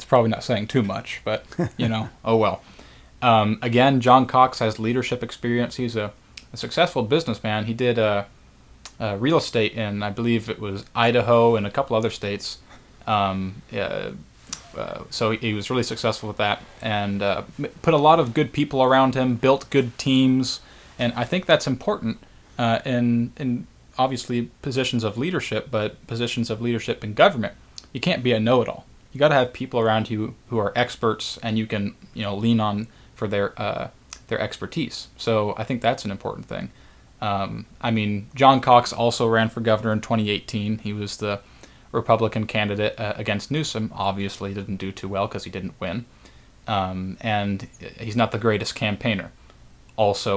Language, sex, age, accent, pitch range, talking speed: English, male, 20-39, American, 105-125 Hz, 180 wpm